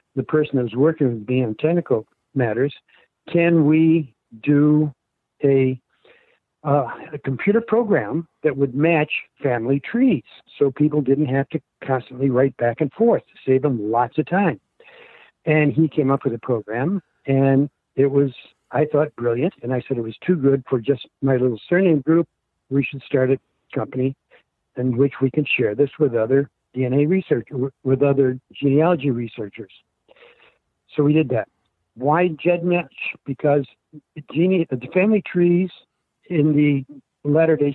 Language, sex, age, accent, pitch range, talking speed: English, male, 60-79, American, 130-155 Hz, 155 wpm